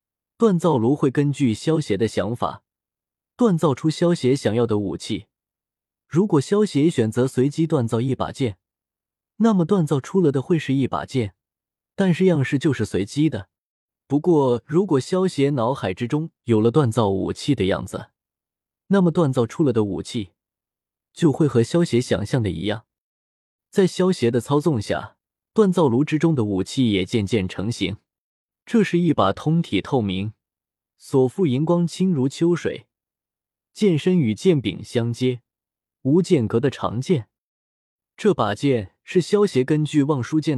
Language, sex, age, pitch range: Chinese, male, 20-39, 105-170 Hz